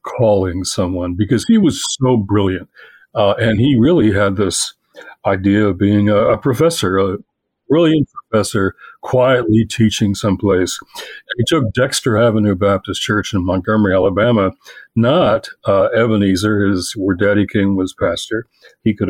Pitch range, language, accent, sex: 100-125 Hz, English, American, male